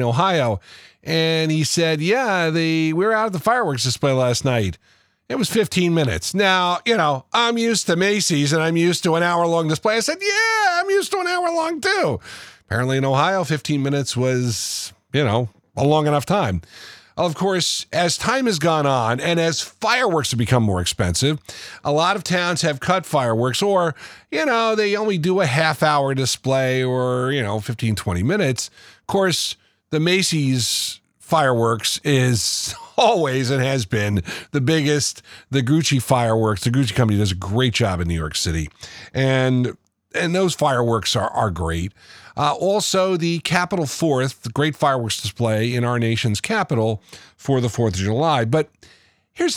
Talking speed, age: 175 wpm, 40-59